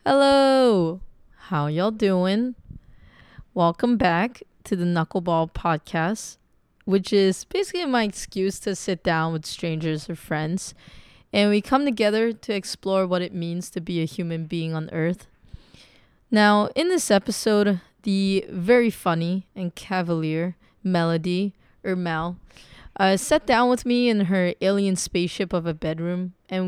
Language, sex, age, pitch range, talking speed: English, female, 20-39, 165-210 Hz, 140 wpm